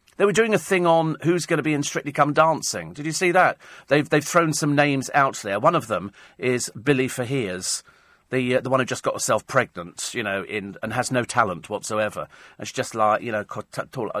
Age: 40-59